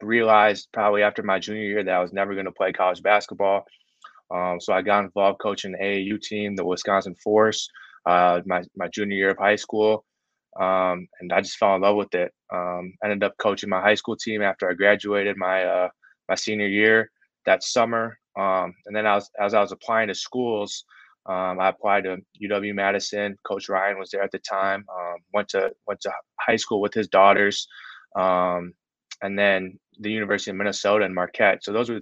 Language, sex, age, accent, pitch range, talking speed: English, male, 20-39, American, 95-105 Hz, 200 wpm